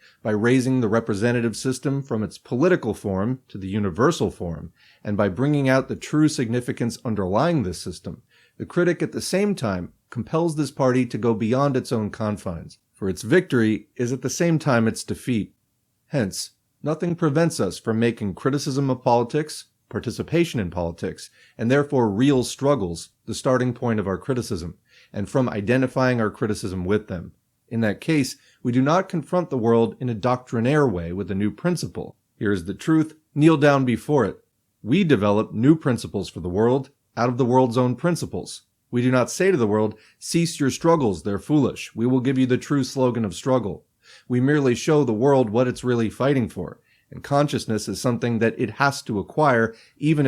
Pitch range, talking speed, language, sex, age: 110-140 Hz, 185 wpm, English, male, 30-49